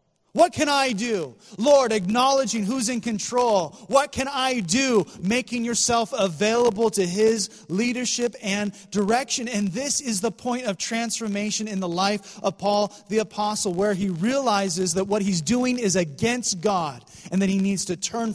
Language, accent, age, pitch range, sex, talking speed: English, American, 30-49, 165-215 Hz, male, 165 wpm